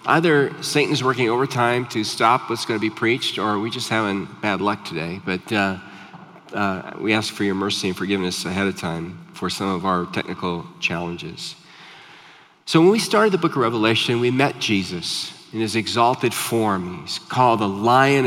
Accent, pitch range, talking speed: American, 105-160 Hz, 185 wpm